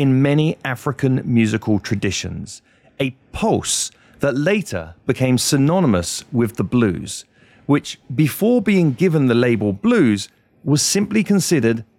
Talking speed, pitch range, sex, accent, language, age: 120 wpm, 115-175 Hz, male, British, English, 40-59